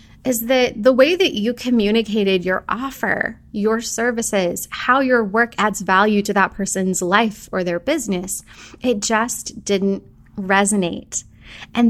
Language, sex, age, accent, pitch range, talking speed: English, female, 20-39, American, 200-250 Hz, 140 wpm